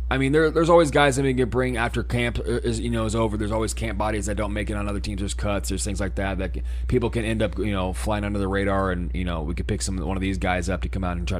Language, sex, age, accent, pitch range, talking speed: English, male, 20-39, American, 90-110 Hz, 325 wpm